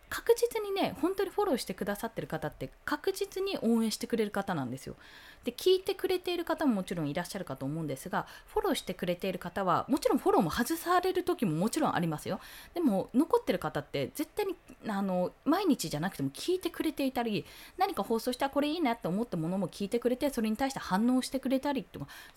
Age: 20-39